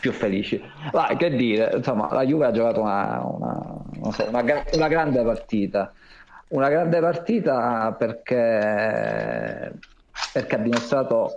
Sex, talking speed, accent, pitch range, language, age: male, 130 wpm, native, 100-120 Hz, Italian, 40-59